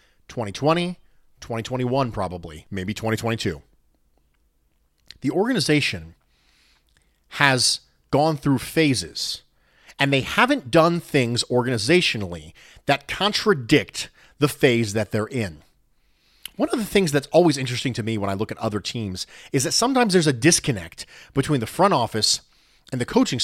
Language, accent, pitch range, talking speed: English, American, 115-185 Hz, 135 wpm